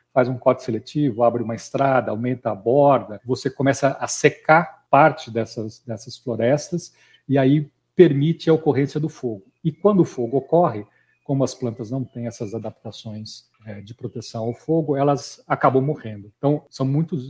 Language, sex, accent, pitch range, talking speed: Portuguese, male, Brazilian, 115-150 Hz, 165 wpm